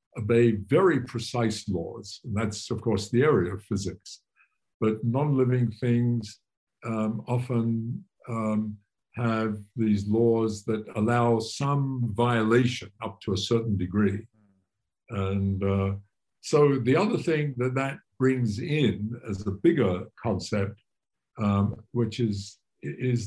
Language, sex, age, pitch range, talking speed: English, male, 60-79, 100-120 Hz, 125 wpm